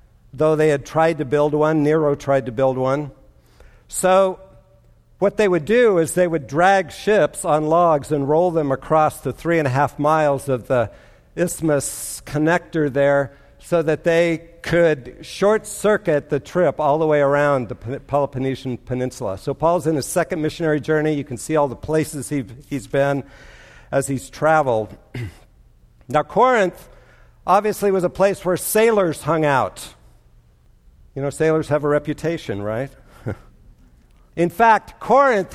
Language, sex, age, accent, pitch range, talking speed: English, male, 60-79, American, 140-175 Hz, 155 wpm